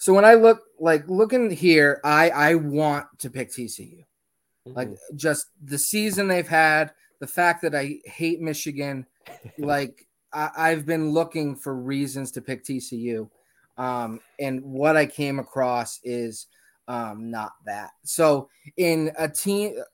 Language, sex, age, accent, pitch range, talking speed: English, male, 20-39, American, 135-170 Hz, 145 wpm